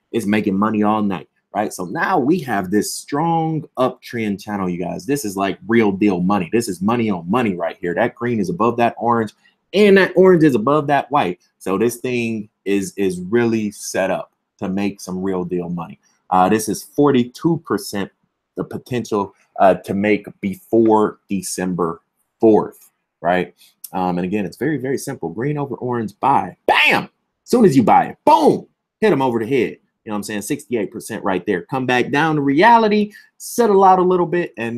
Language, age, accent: English, 20-39, American